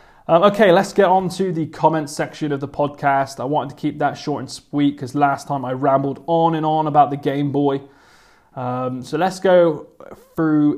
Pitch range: 135-160 Hz